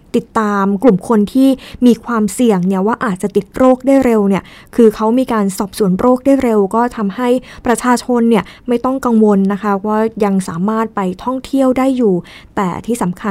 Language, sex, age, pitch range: Thai, female, 20-39, 210-255 Hz